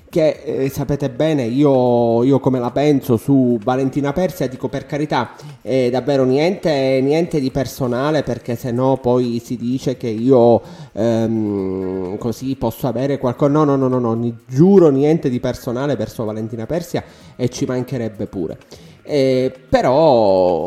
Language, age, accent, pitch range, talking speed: Italian, 30-49, native, 125-150 Hz, 150 wpm